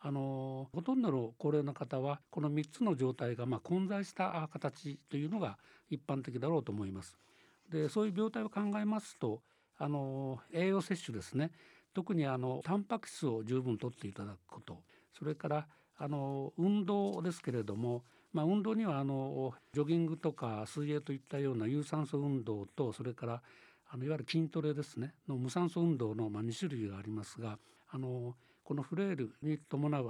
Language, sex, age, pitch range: Japanese, male, 60-79, 125-165 Hz